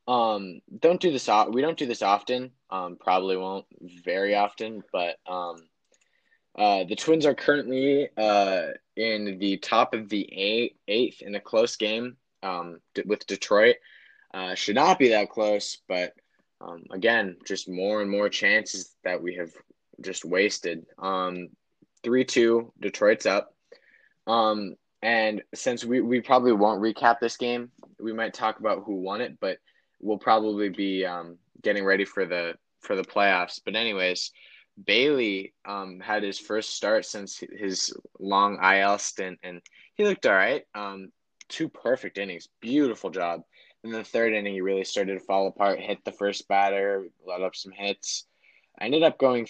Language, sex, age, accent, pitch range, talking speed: English, male, 20-39, American, 95-110 Hz, 165 wpm